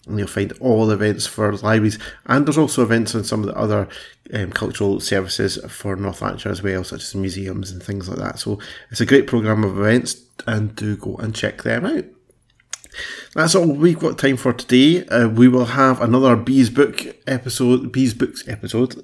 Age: 30-49